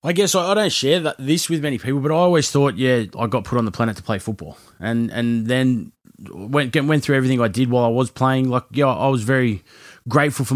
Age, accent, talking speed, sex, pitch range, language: 20-39, Australian, 245 wpm, male, 110-130 Hz, English